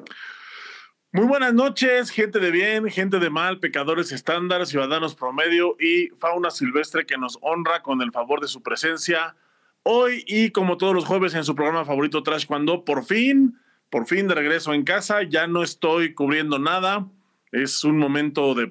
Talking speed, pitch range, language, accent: 175 wpm, 145-190 Hz, Spanish, Mexican